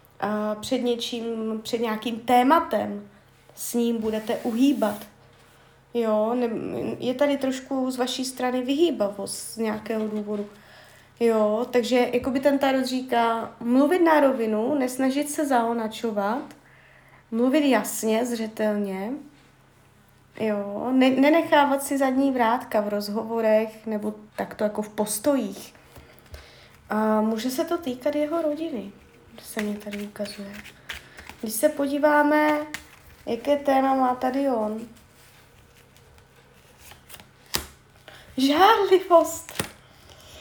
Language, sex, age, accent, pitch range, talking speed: Czech, female, 30-49, native, 215-285 Hz, 105 wpm